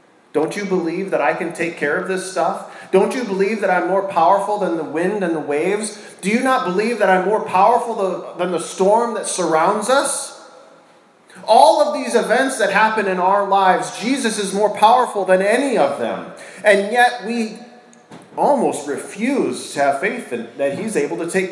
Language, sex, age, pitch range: English, male, 40-59, 185-235 Hz